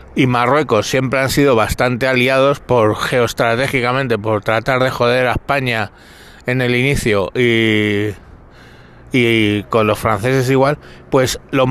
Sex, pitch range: male, 115-155 Hz